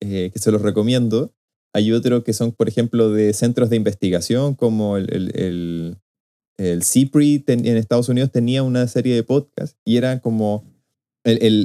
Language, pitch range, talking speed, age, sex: Spanish, 115-145 Hz, 175 wpm, 20-39, male